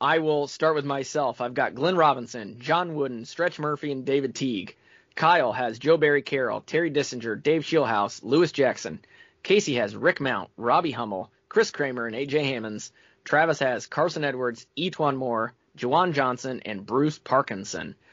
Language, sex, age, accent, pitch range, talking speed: English, male, 20-39, American, 125-155 Hz, 160 wpm